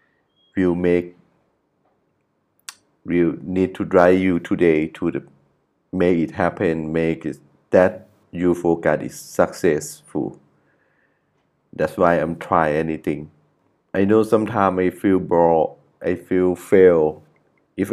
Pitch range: 80-95 Hz